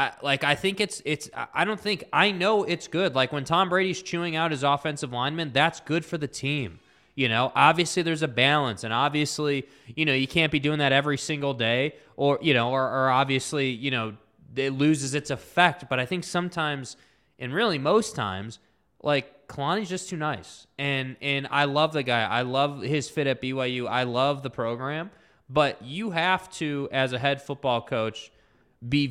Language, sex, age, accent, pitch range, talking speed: English, male, 20-39, American, 120-155 Hz, 200 wpm